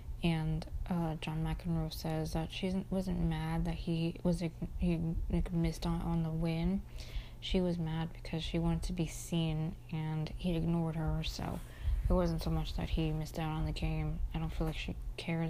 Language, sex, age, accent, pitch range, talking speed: English, female, 20-39, American, 160-185 Hz, 195 wpm